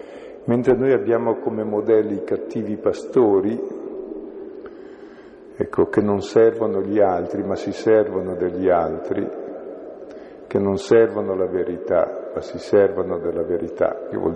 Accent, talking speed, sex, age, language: native, 125 wpm, male, 50-69, Italian